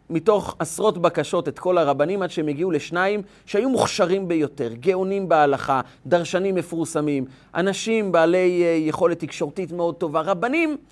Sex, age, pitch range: male, 30-49, 140-195 Hz